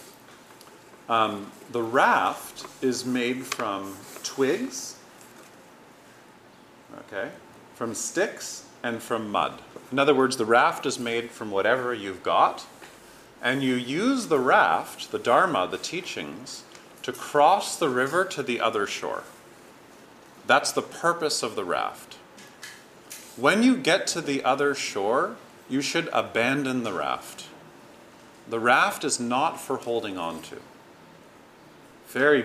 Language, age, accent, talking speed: English, 40-59, American, 125 wpm